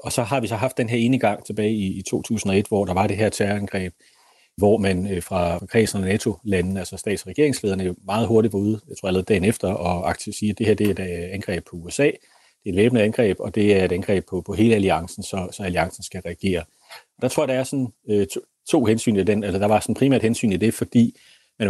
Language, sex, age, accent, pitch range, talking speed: Danish, male, 30-49, native, 95-110 Hz, 225 wpm